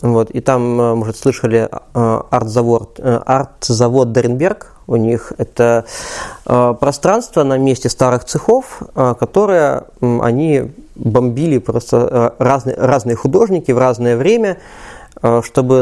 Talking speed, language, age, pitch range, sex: 100 wpm, Russian, 20-39, 120-150 Hz, male